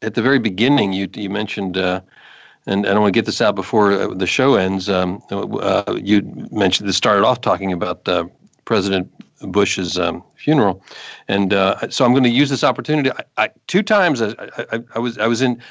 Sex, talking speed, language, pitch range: male, 205 wpm, English, 95-115 Hz